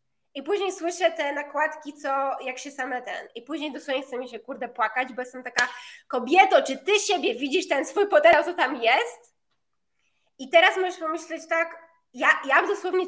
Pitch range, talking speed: 260-340 Hz, 185 wpm